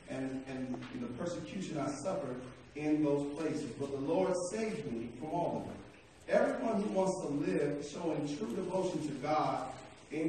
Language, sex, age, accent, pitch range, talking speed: English, male, 40-59, American, 145-195 Hz, 175 wpm